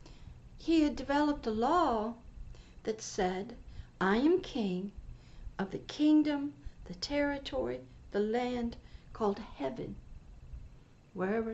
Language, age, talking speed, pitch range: English, 60-79, 105 wpm, 220-300 Hz